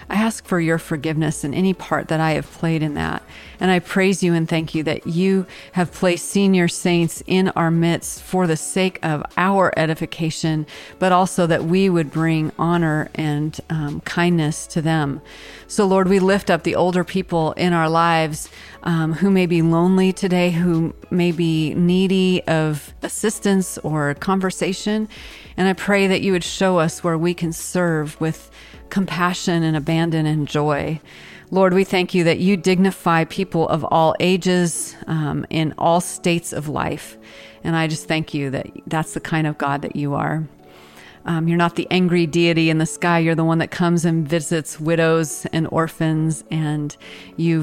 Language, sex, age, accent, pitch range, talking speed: English, female, 40-59, American, 155-180 Hz, 180 wpm